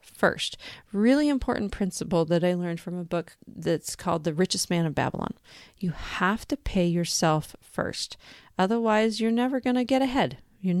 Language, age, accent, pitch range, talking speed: English, 40-59, American, 170-200 Hz, 170 wpm